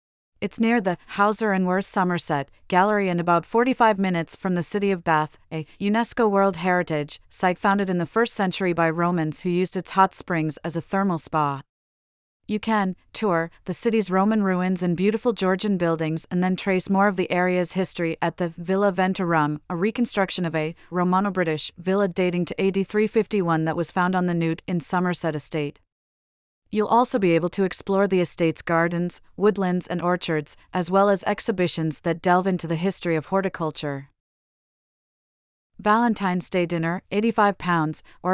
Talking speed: 165 wpm